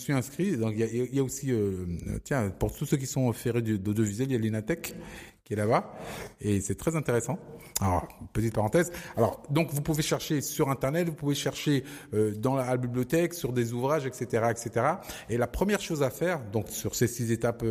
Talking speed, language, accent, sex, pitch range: 225 wpm, French, French, male, 115-150 Hz